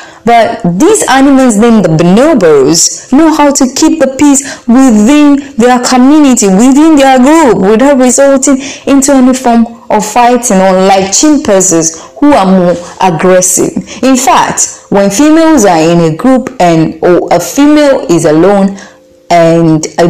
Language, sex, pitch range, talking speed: English, female, 175-260 Hz, 145 wpm